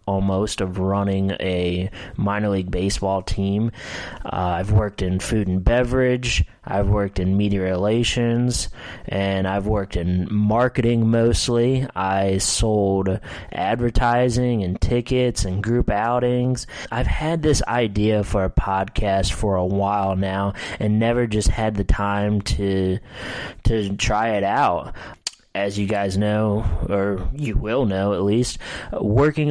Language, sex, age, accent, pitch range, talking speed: English, male, 20-39, American, 95-115 Hz, 135 wpm